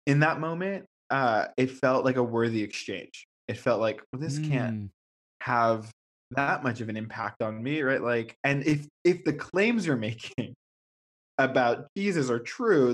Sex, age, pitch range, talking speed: male, 20-39, 110-130 Hz, 170 wpm